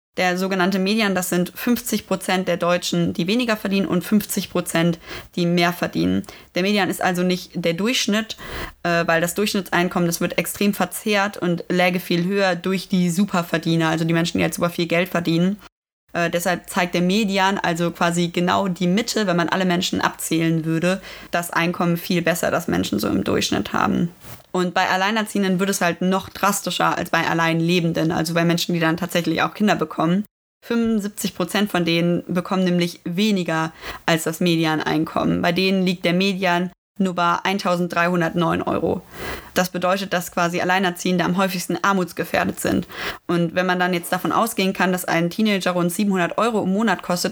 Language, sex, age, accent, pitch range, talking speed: German, female, 20-39, German, 170-190 Hz, 175 wpm